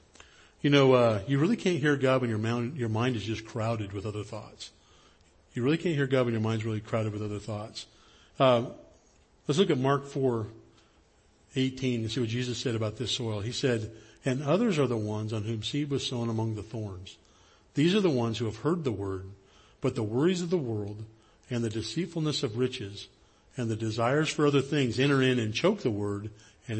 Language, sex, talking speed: English, male, 210 wpm